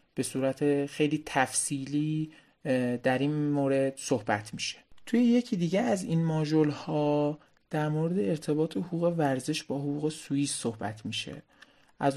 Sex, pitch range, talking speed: male, 130-160 Hz, 135 wpm